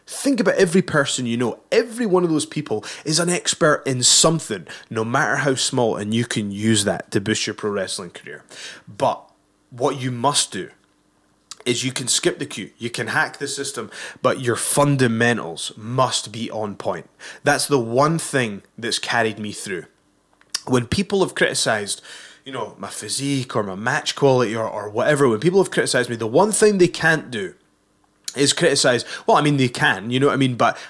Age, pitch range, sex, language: 20-39, 110-145 Hz, male, English